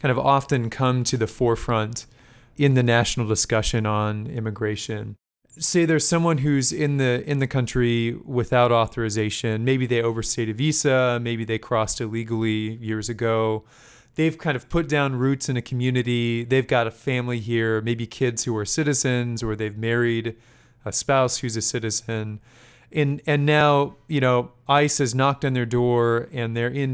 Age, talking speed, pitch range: 30-49, 170 wpm, 115-140 Hz